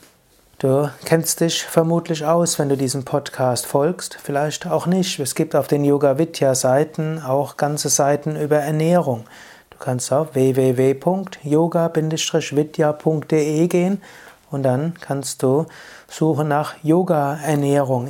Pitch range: 140-170 Hz